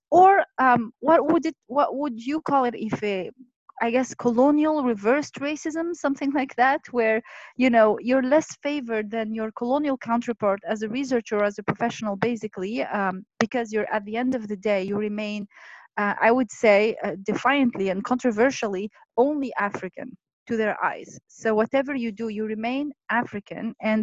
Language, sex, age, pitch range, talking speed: English, female, 30-49, 210-260 Hz, 175 wpm